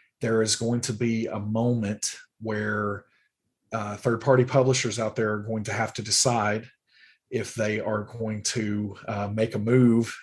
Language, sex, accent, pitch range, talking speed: English, male, American, 105-120 Hz, 170 wpm